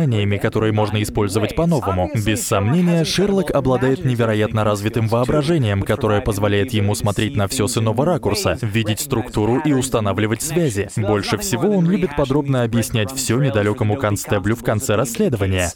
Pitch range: 105-145 Hz